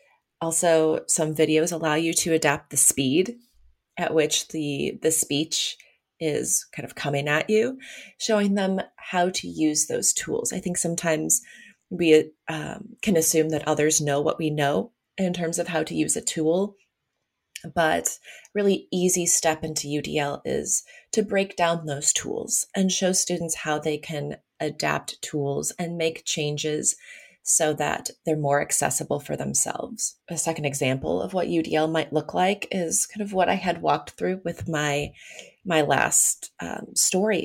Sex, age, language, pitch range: female, 30-49, English, 150-195 Hz